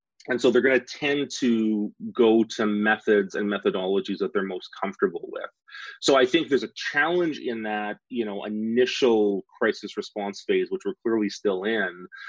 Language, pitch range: English, 105-130 Hz